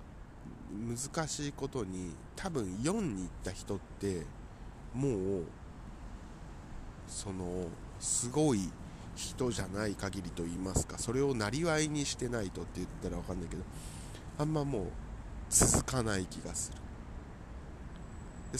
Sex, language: male, Japanese